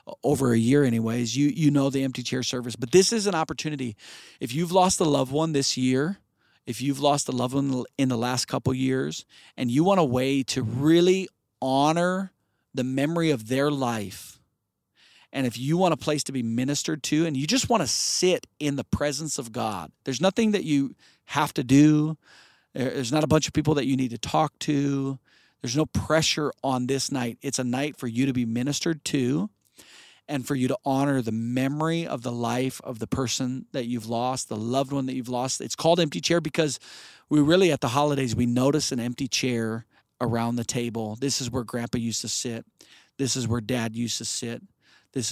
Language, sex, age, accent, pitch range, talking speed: English, male, 40-59, American, 120-145 Hz, 210 wpm